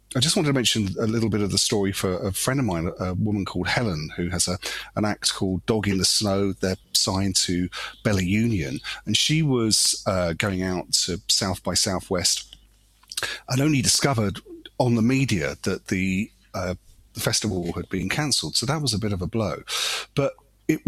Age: 40-59